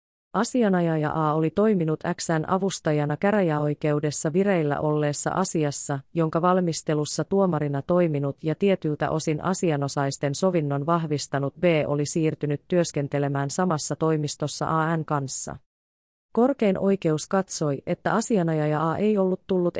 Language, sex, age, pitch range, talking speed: Finnish, female, 30-49, 145-185 Hz, 110 wpm